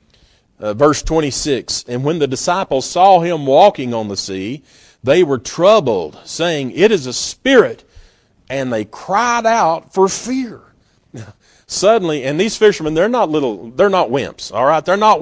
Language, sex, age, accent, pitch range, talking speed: English, male, 40-59, American, 140-190 Hz, 160 wpm